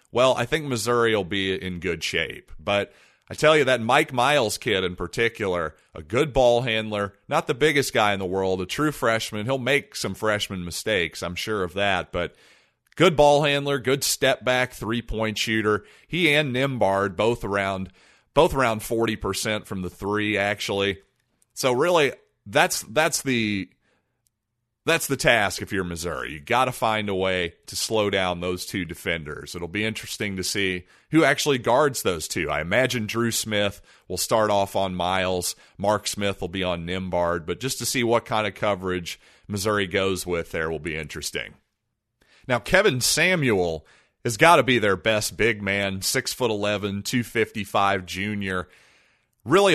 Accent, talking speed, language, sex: American, 170 wpm, English, male